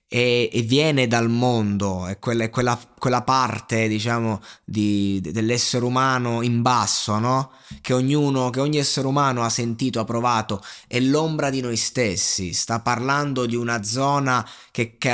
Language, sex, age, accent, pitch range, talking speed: Italian, male, 20-39, native, 110-140 Hz, 155 wpm